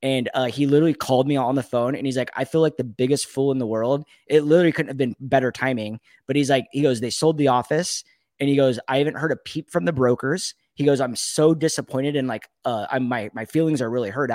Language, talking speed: English, 265 wpm